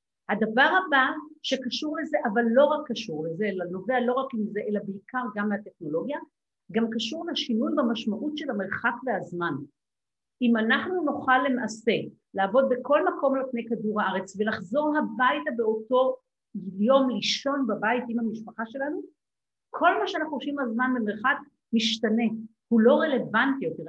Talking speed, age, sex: 140 wpm, 50-69, female